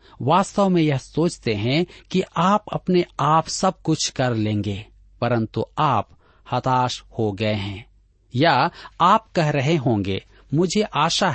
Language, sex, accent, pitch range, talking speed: Hindi, male, native, 105-165 Hz, 135 wpm